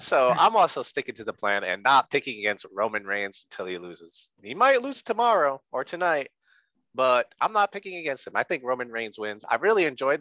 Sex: male